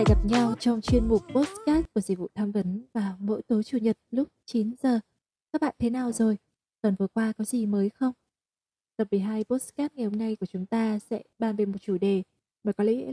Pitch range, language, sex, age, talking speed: 205-250 Hz, Vietnamese, female, 20-39, 230 wpm